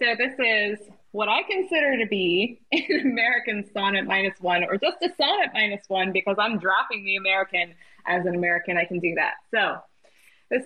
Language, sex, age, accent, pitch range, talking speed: English, female, 20-39, American, 175-220 Hz, 185 wpm